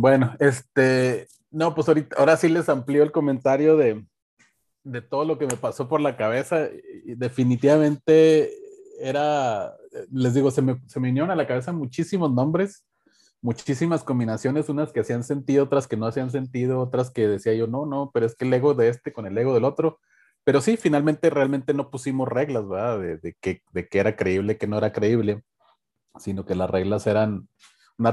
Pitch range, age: 110-145 Hz, 30-49